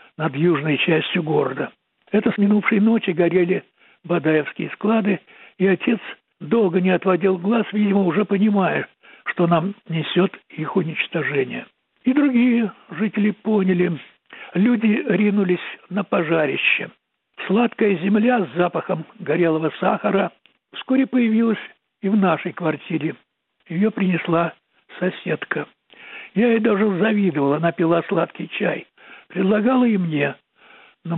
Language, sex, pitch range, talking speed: Russian, male, 175-220 Hz, 115 wpm